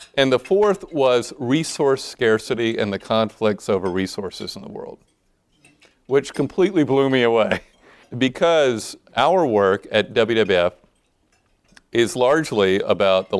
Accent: American